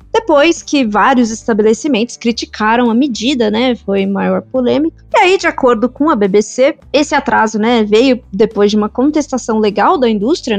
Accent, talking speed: Brazilian, 165 wpm